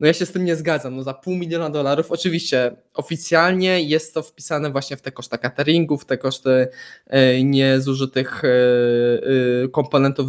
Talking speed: 150 wpm